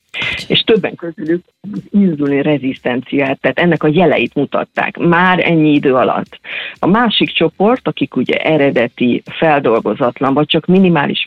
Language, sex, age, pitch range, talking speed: Hungarian, female, 40-59, 140-175 Hz, 130 wpm